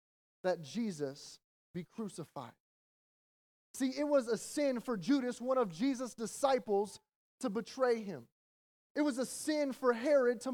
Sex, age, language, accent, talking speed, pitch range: male, 30-49, English, American, 140 wpm, 195-260 Hz